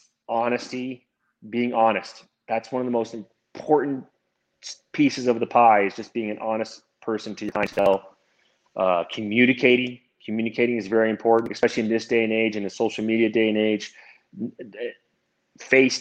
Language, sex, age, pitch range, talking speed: English, male, 30-49, 115-140 Hz, 155 wpm